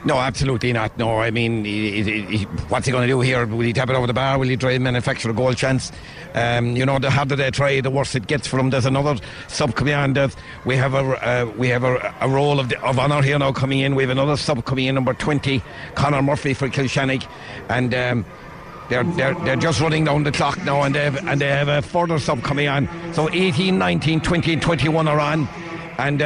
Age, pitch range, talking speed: 60-79, 135-175 Hz, 245 wpm